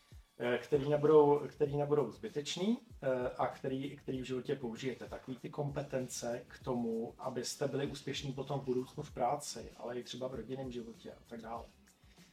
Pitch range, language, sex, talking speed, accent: 125-145 Hz, Czech, male, 160 wpm, native